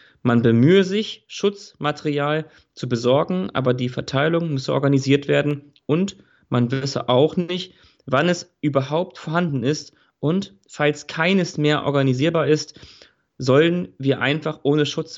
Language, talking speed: German, 130 wpm